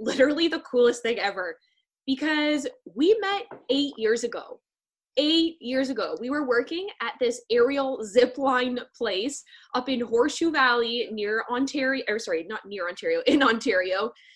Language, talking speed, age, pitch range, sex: English, 145 wpm, 10-29, 245-335 Hz, female